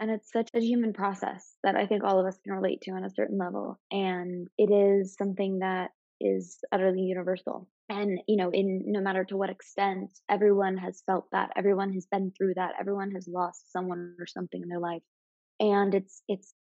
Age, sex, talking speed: 20-39, female, 205 wpm